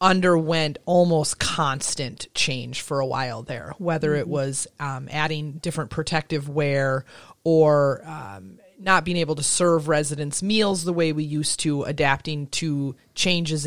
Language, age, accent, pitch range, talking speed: English, 30-49, American, 145-180 Hz, 145 wpm